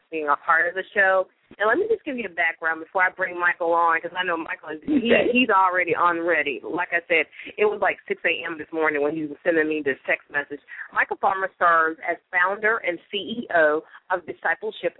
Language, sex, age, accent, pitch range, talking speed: English, female, 30-49, American, 160-205 Hz, 215 wpm